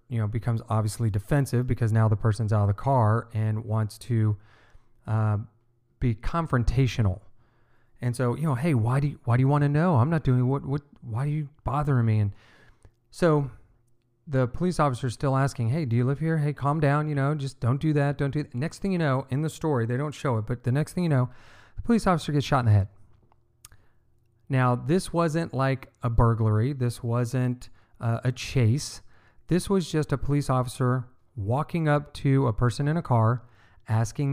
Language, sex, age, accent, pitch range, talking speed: English, male, 40-59, American, 115-145 Hz, 205 wpm